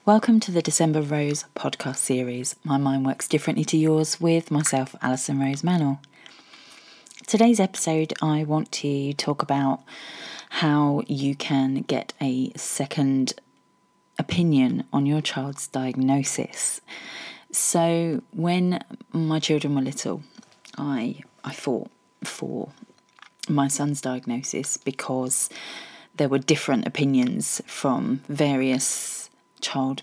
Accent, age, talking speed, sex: British, 30-49, 115 wpm, female